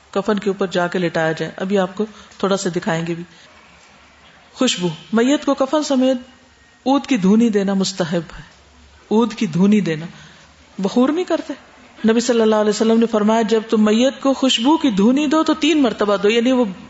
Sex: female